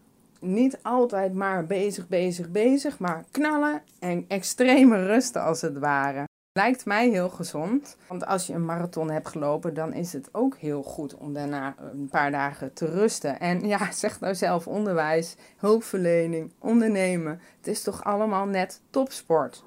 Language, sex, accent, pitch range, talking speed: Dutch, female, Dutch, 165-235 Hz, 160 wpm